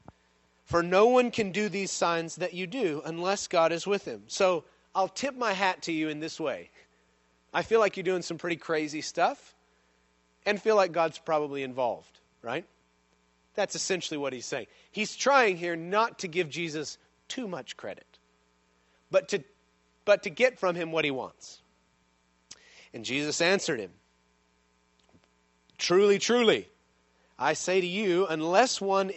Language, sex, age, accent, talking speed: English, male, 30-49, American, 160 wpm